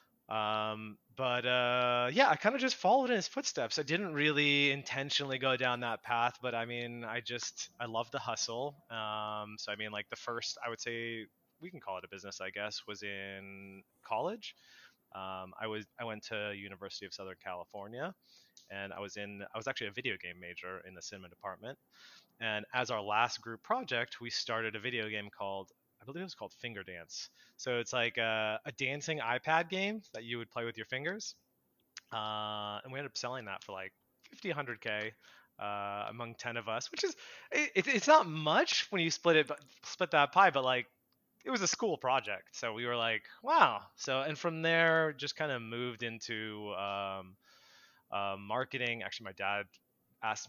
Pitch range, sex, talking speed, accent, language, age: 100-140 Hz, male, 195 wpm, American, English, 20-39